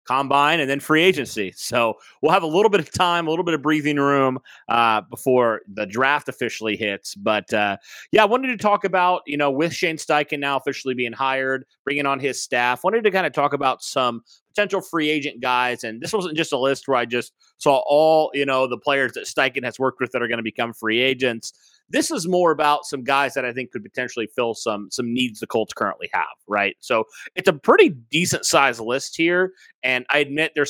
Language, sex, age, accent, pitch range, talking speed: English, male, 30-49, American, 115-150 Hz, 225 wpm